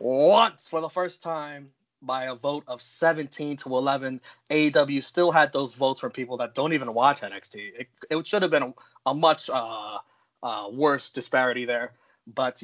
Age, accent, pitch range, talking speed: 30-49, American, 130-175 Hz, 180 wpm